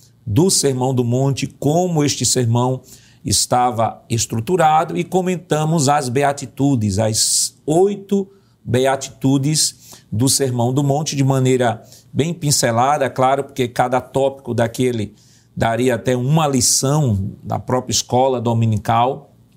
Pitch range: 120-145 Hz